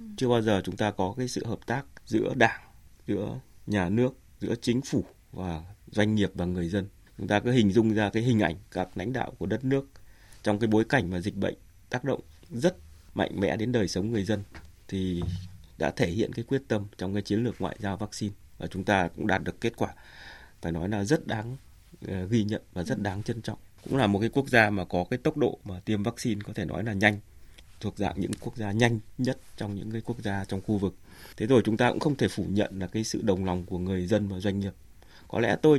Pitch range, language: 95-115 Hz, Vietnamese